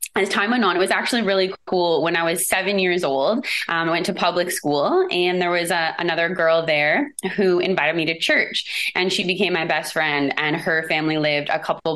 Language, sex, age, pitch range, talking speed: English, female, 20-39, 150-185 Hz, 225 wpm